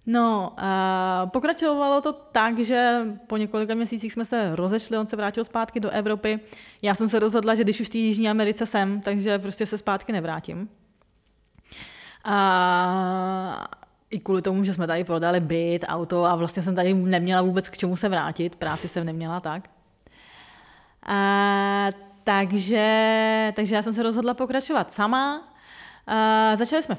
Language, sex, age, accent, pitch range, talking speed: Czech, female, 20-39, native, 190-230 Hz, 160 wpm